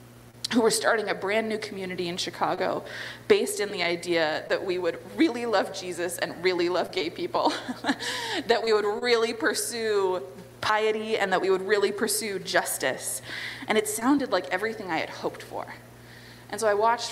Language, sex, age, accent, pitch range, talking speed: English, female, 20-39, American, 185-260 Hz, 175 wpm